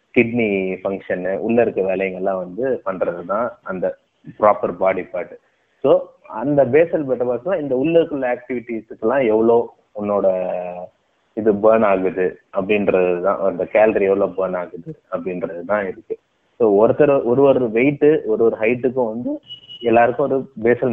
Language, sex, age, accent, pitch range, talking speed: Tamil, male, 20-39, native, 100-130 Hz, 140 wpm